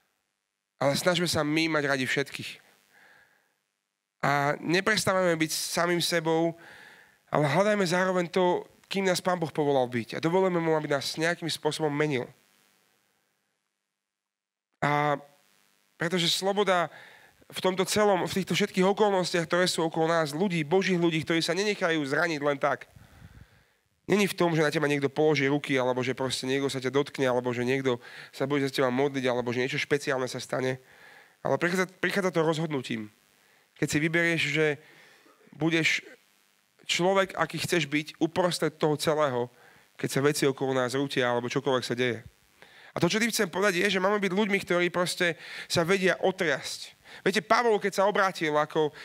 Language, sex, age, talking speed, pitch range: Slovak, male, 30-49, 160 wpm, 135-180 Hz